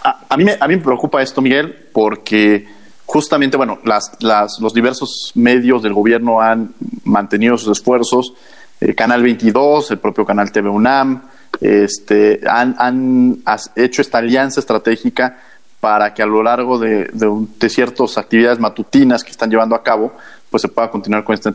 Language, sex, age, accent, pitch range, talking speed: Spanish, male, 40-59, Mexican, 110-145 Hz, 170 wpm